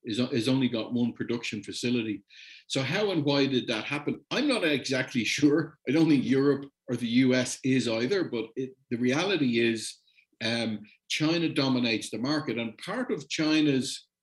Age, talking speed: 50-69, 170 wpm